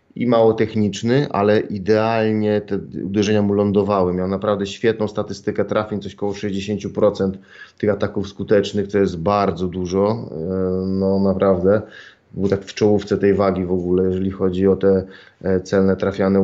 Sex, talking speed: male, 145 wpm